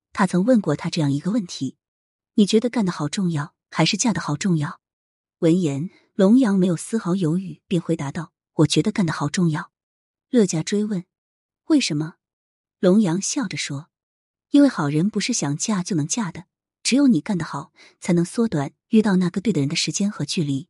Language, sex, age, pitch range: Chinese, female, 20-39, 155-215 Hz